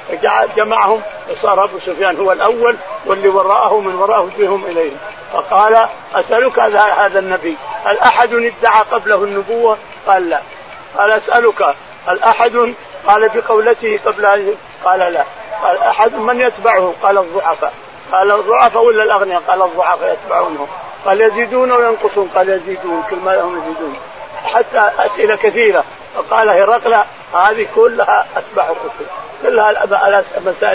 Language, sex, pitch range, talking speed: Arabic, male, 185-230 Hz, 125 wpm